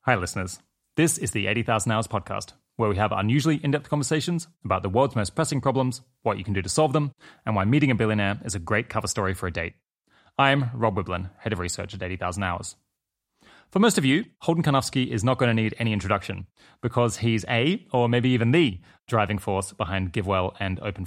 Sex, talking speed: male, 215 wpm